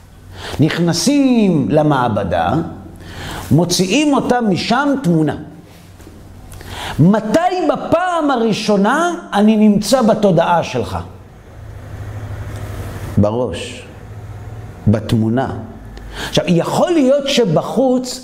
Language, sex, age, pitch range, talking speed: Hebrew, male, 50-69, 155-250 Hz, 65 wpm